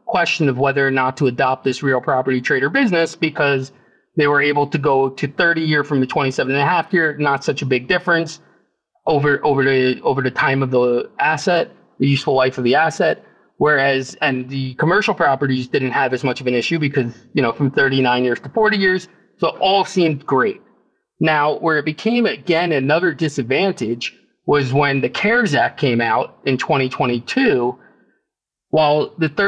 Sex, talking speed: male, 185 wpm